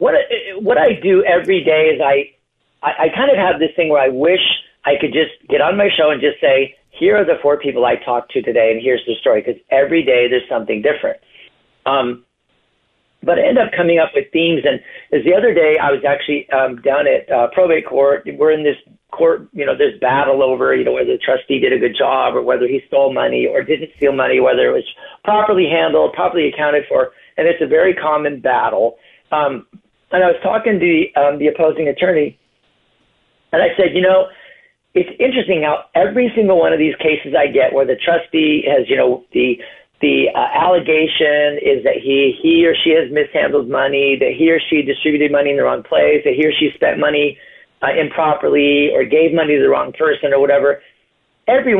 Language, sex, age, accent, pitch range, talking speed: English, male, 50-69, American, 140-225 Hz, 210 wpm